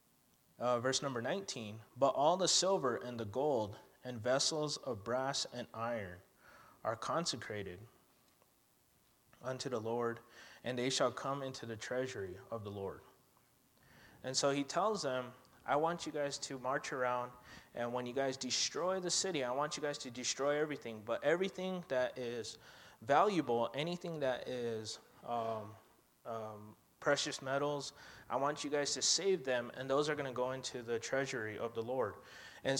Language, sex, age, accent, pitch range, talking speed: English, male, 20-39, American, 120-150 Hz, 165 wpm